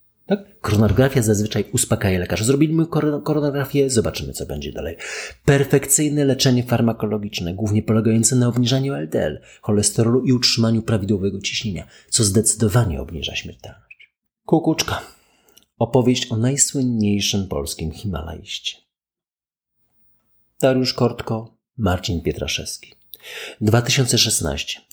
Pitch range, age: 95-130 Hz, 30-49